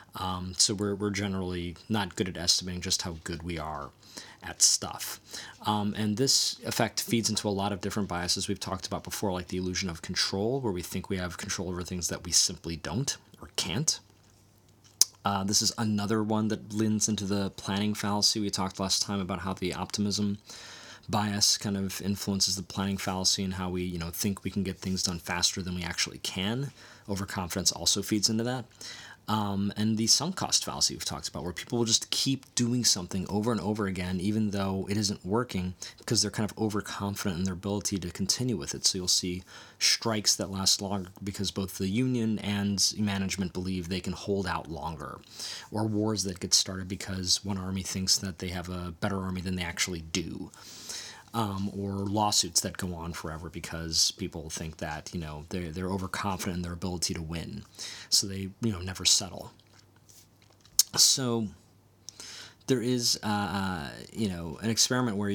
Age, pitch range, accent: 20-39, 90-105 Hz, American